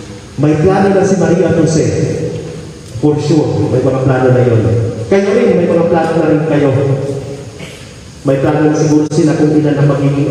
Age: 40-59